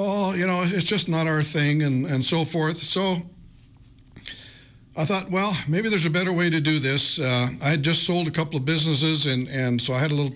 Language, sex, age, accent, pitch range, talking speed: English, male, 60-79, American, 130-165 Hz, 245 wpm